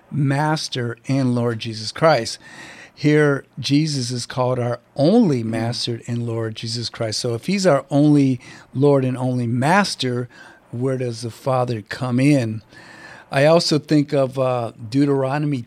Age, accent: 40-59, American